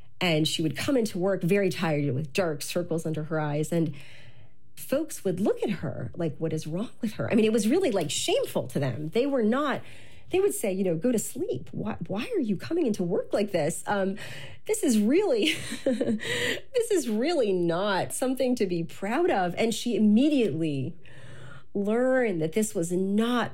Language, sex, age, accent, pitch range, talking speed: English, female, 40-59, American, 150-215 Hz, 195 wpm